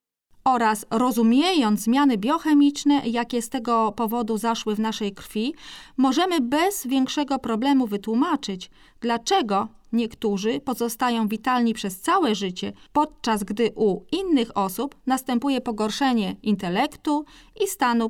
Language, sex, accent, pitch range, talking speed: Polish, female, native, 210-280 Hz, 115 wpm